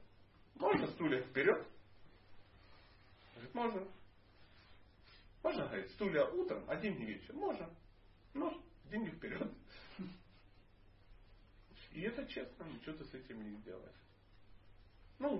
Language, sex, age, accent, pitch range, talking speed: Russian, male, 40-59, native, 100-145 Hz, 100 wpm